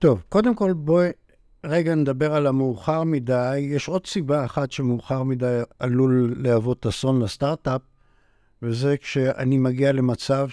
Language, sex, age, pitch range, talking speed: Hebrew, male, 60-79, 115-150 Hz, 130 wpm